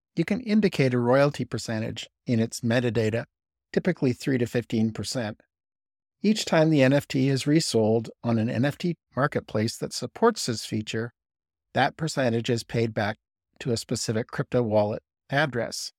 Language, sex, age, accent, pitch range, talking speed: English, male, 60-79, American, 110-140 Hz, 145 wpm